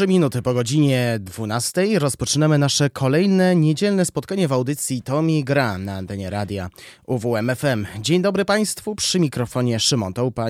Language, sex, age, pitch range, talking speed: Polish, male, 20-39, 110-160 Hz, 135 wpm